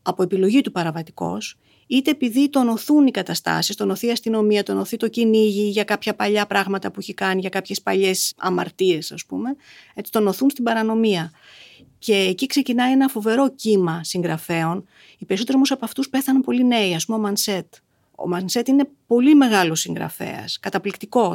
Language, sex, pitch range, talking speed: Greek, female, 185-240 Hz, 165 wpm